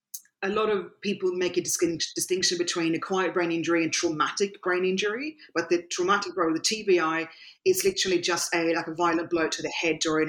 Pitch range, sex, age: 165-190 Hz, female, 30-49